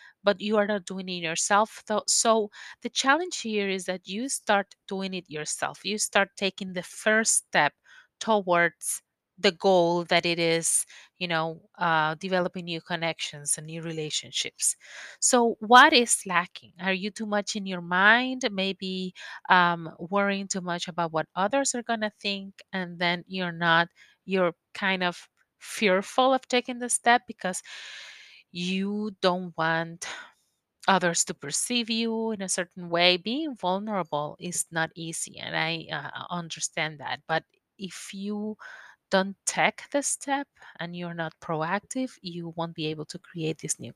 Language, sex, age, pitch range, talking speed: English, female, 30-49, 175-220 Hz, 155 wpm